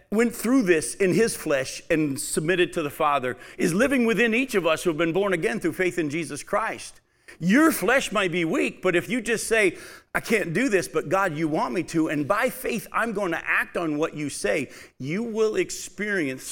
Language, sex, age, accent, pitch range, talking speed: English, male, 50-69, American, 140-190 Hz, 220 wpm